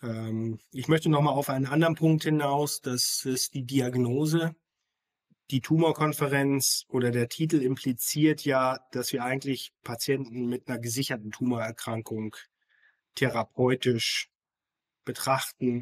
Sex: male